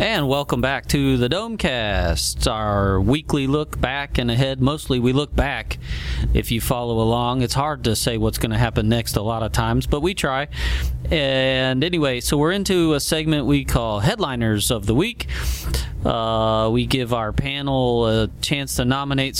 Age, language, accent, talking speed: 30-49, English, American, 180 wpm